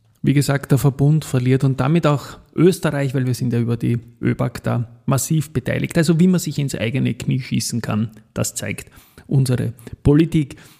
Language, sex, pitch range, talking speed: German, male, 115-145 Hz, 180 wpm